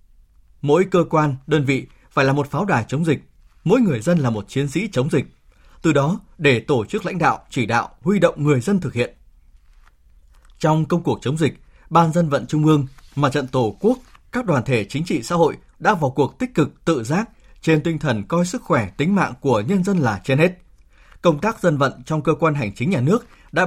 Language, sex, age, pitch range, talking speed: Vietnamese, male, 20-39, 125-180 Hz, 230 wpm